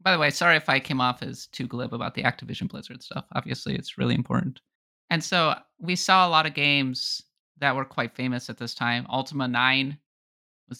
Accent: American